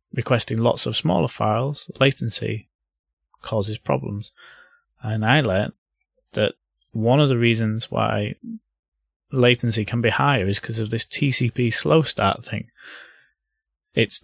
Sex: male